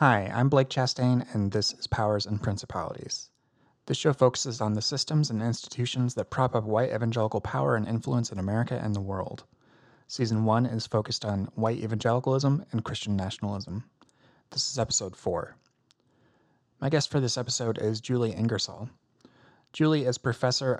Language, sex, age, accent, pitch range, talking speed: English, male, 30-49, American, 110-130 Hz, 160 wpm